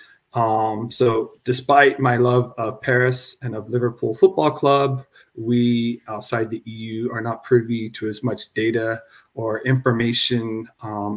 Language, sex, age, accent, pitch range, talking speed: English, male, 30-49, American, 110-135 Hz, 140 wpm